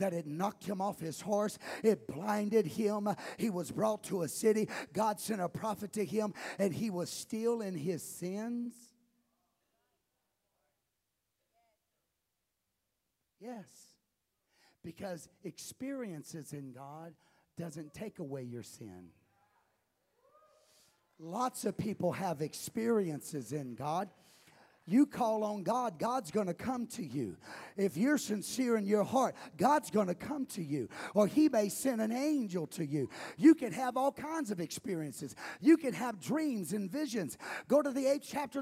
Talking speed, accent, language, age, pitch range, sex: 145 wpm, American, English, 50-69, 180-265 Hz, male